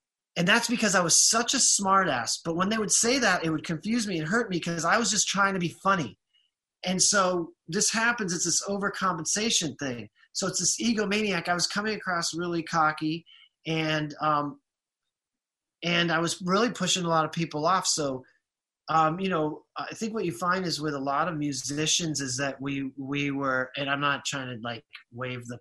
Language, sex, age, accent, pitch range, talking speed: English, male, 30-49, American, 145-180 Hz, 205 wpm